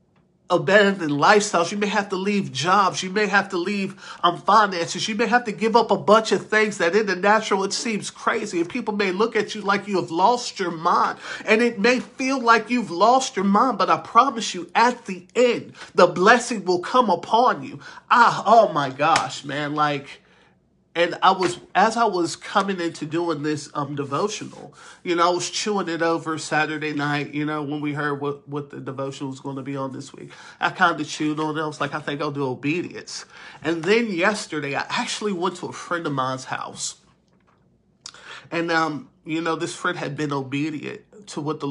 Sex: male